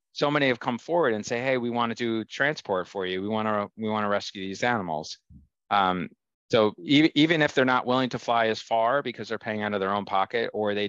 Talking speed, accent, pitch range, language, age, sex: 255 wpm, American, 95-120 Hz, English, 30-49, male